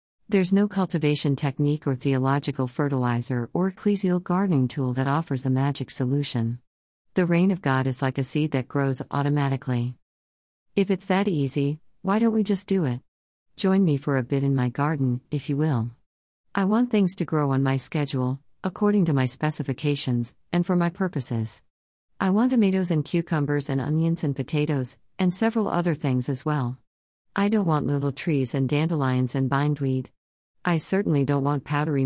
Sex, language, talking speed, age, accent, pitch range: female, English, 175 wpm, 50-69, American, 130-170 Hz